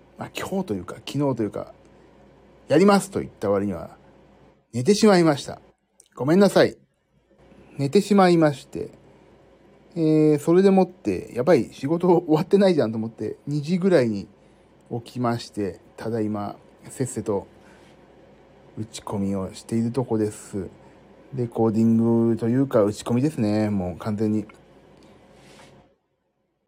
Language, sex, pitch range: Japanese, male, 110-150 Hz